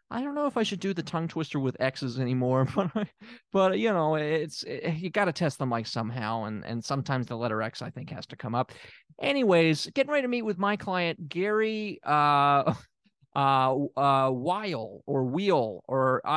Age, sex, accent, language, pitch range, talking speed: 30-49, male, American, English, 125-190 Hz, 205 wpm